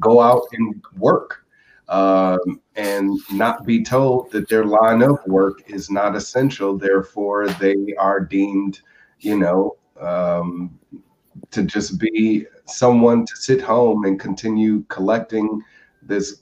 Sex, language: male, English